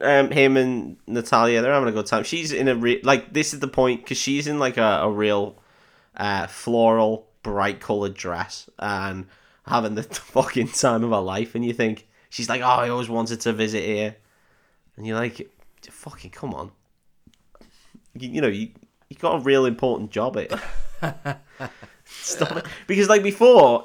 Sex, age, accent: male, 20-39, British